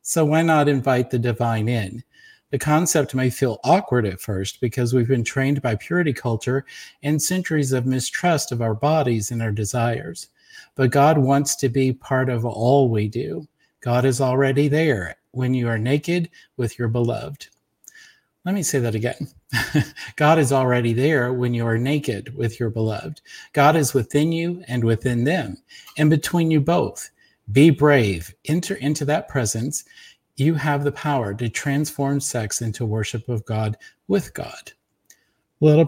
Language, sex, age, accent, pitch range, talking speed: English, male, 50-69, American, 120-150 Hz, 165 wpm